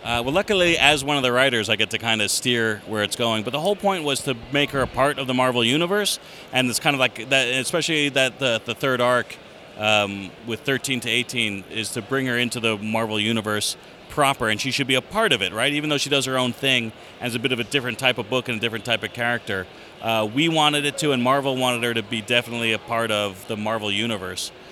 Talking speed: 255 wpm